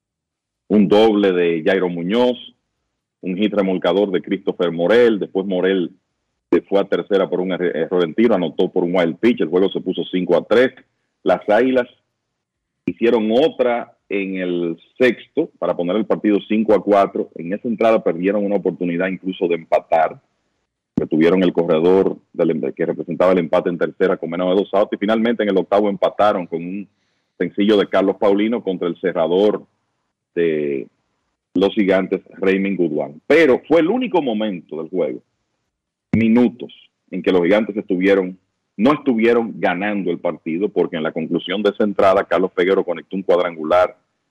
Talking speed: 165 wpm